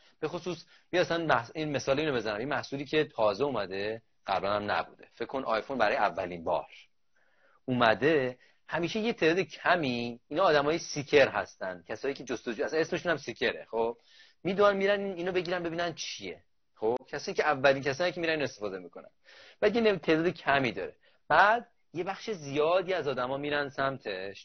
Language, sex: Persian, male